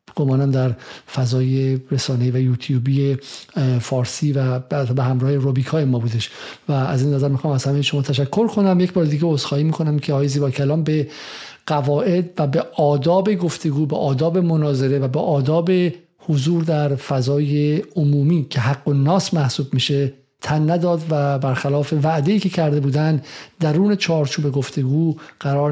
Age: 50-69